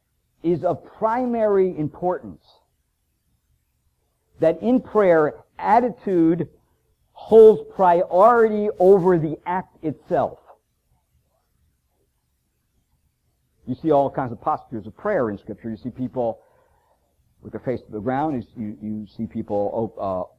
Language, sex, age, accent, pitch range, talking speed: English, male, 50-69, American, 110-160 Hz, 110 wpm